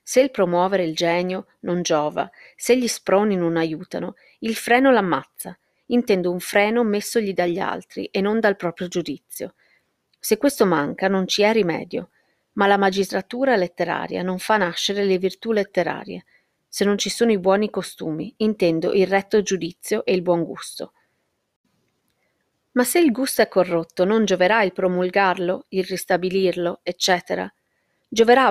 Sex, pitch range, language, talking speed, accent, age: female, 175-215 Hz, Italian, 150 wpm, native, 40-59